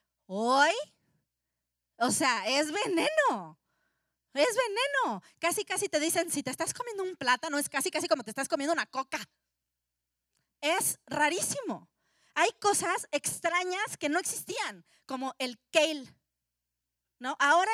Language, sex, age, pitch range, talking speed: Spanish, female, 30-49, 240-315 Hz, 130 wpm